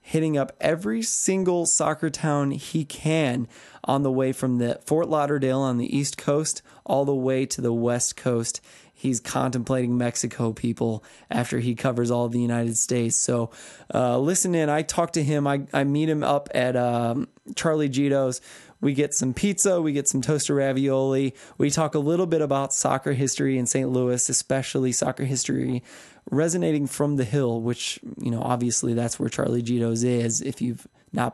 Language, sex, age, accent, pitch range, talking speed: English, male, 20-39, American, 125-155 Hz, 180 wpm